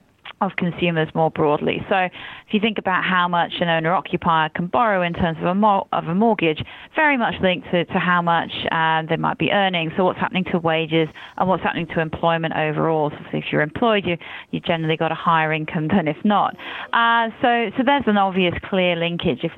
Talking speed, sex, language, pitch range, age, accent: 200 wpm, female, English, 165-195 Hz, 30-49, British